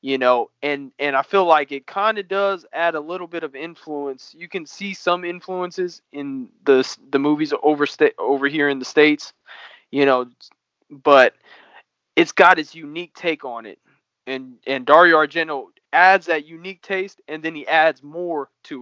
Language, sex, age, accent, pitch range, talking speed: English, male, 20-39, American, 140-175 Hz, 180 wpm